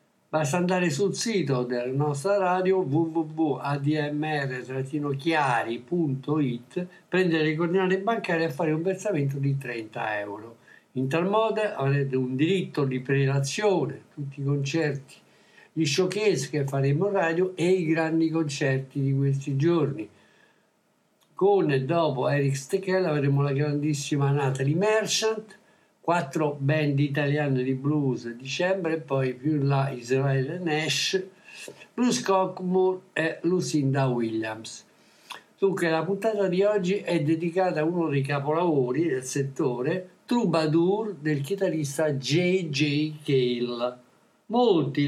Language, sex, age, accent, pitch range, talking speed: Italian, male, 60-79, native, 140-180 Hz, 120 wpm